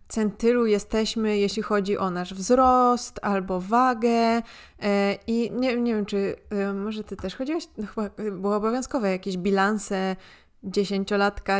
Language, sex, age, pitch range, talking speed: Polish, female, 20-39, 200-250 Hz, 125 wpm